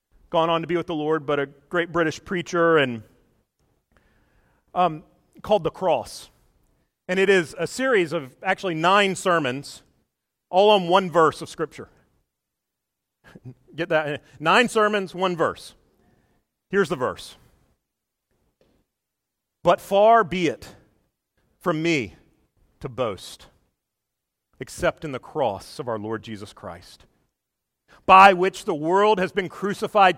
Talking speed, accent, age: 130 wpm, American, 40-59